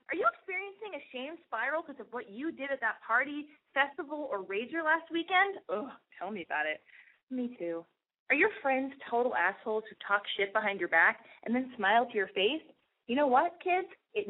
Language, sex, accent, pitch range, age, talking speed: English, female, American, 255-380 Hz, 30-49, 200 wpm